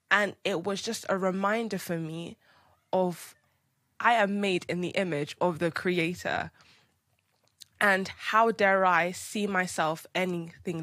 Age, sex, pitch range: 10-29, female, 165-195 Hz